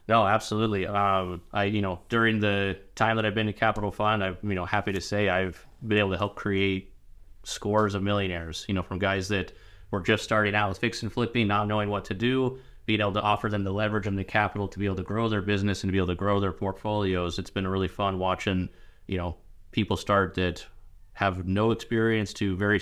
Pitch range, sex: 95-105 Hz, male